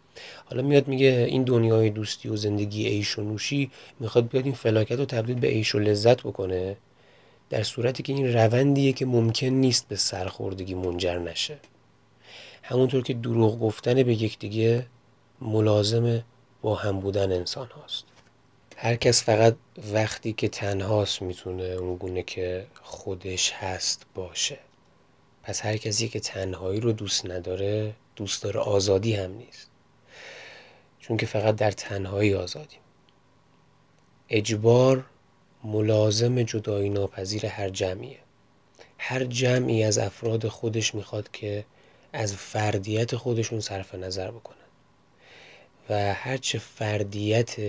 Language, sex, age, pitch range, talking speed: Persian, male, 30-49, 100-120 Hz, 125 wpm